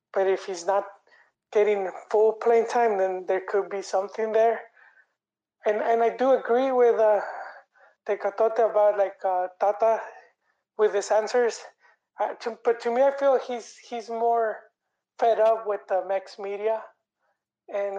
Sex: male